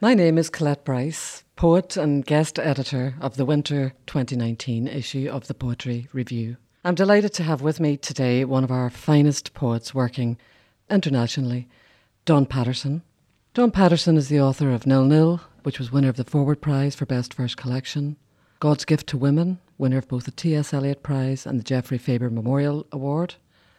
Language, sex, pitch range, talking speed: English, female, 125-150 Hz, 175 wpm